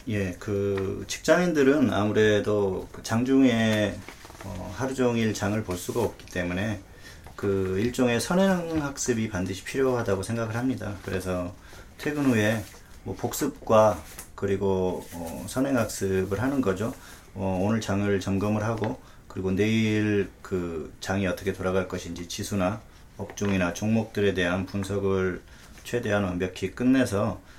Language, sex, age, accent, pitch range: Korean, male, 40-59, native, 95-115 Hz